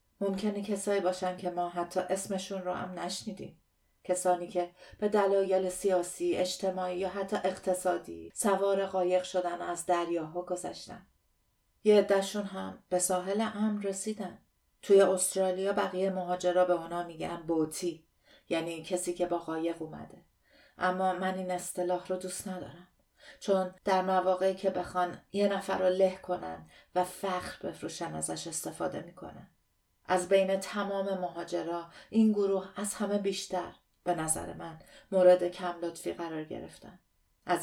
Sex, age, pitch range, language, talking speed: female, 40-59, 175-195 Hz, Persian, 135 wpm